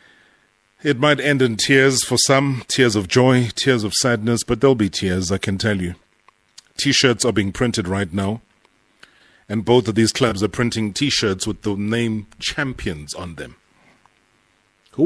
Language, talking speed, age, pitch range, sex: English, 165 wpm, 30-49, 100-125 Hz, male